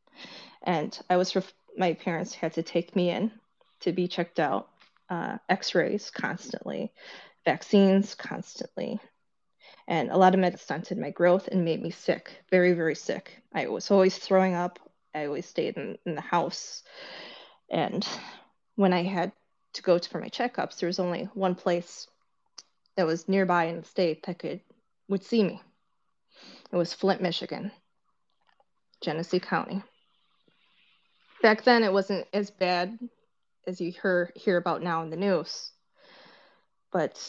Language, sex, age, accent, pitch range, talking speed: English, female, 20-39, American, 175-205 Hz, 150 wpm